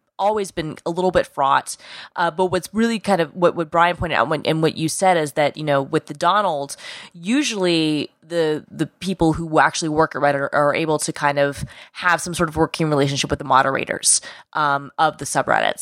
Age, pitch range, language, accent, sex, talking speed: 20-39, 145-175 Hz, English, American, female, 210 wpm